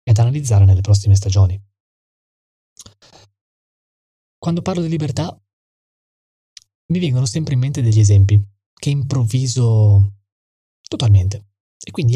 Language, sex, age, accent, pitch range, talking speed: Italian, male, 20-39, native, 100-115 Hz, 110 wpm